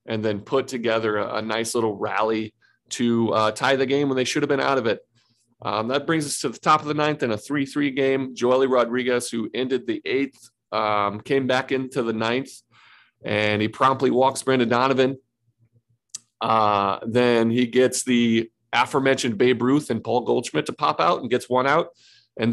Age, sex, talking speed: 40-59, male, 195 wpm